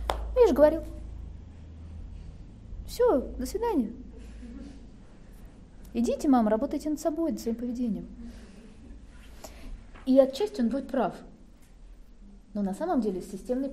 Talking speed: 110 wpm